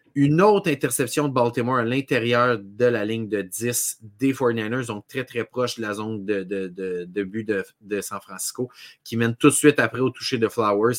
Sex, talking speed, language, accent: male, 220 wpm, French, Canadian